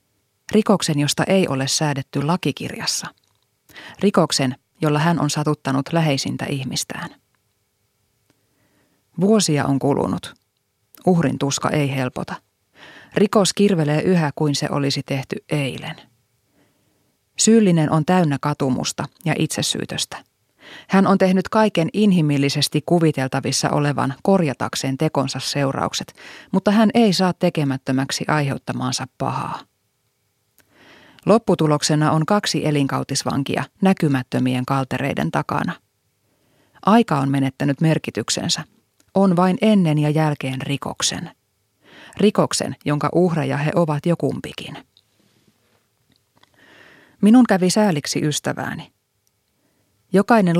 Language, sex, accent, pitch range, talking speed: Finnish, female, native, 135-185 Hz, 95 wpm